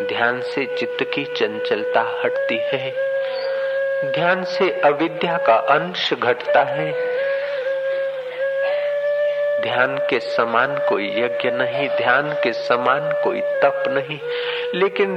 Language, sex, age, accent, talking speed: Hindi, male, 50-69, native, 105 wpm